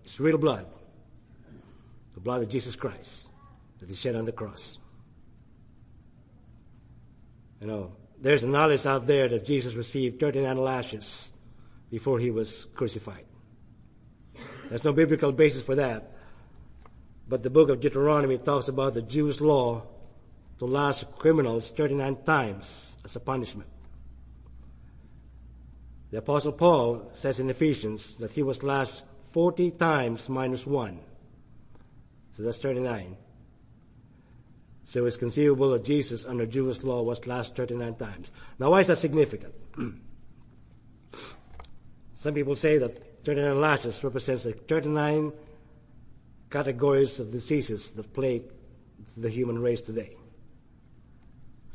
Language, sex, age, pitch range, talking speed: English, male, 50-69, 115-140 Hz, 125 wpm